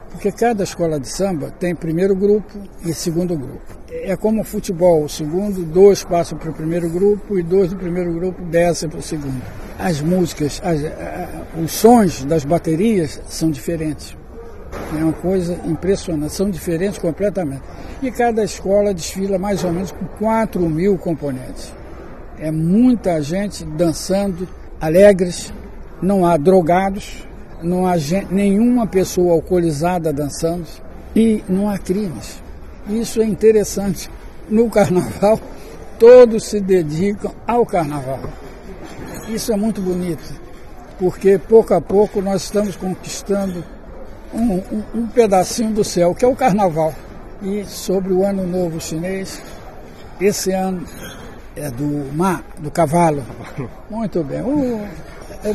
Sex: male